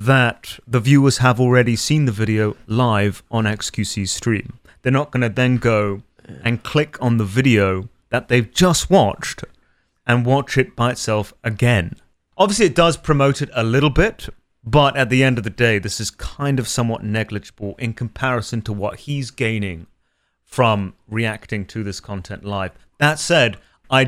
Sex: male